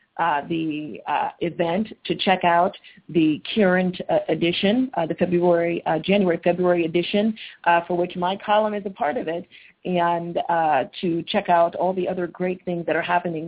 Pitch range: 165-185 Hz